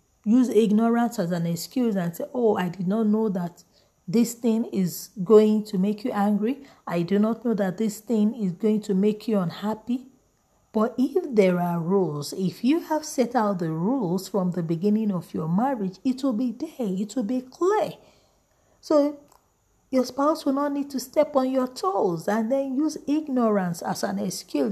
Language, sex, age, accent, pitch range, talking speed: English, female, 40-59, Nigerian, 200-260 Hz, 190 wpm